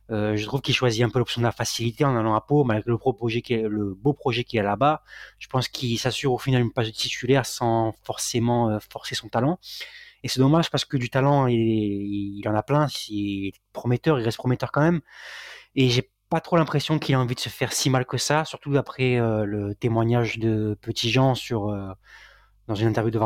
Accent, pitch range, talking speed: French, 110-130 Hz, 220 wpm